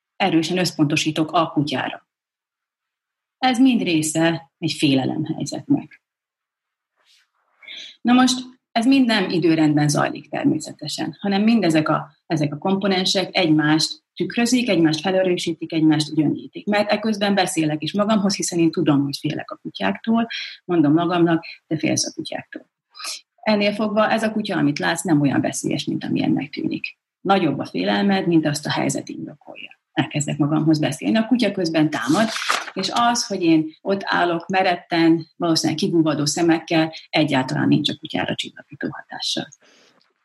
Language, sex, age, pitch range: Hungarian, female, 30-49, 155-215 Hz